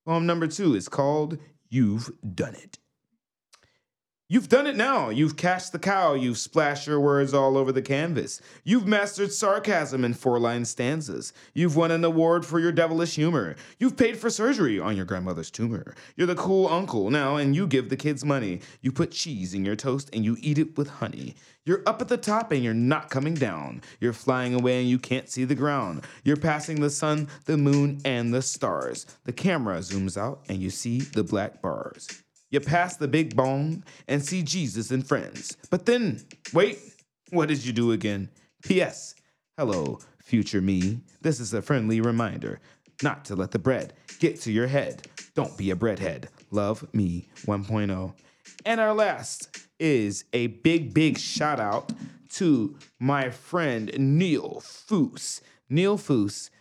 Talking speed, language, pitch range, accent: 175 wpm, English, 120-165 Hz, American